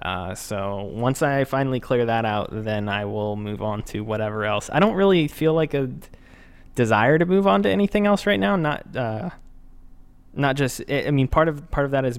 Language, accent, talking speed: English, American, 210 wpm